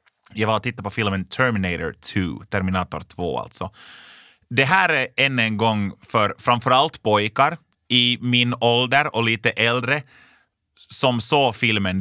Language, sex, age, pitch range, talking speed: Swedish, male, 30-49, 100-130 Hz, 145 wpm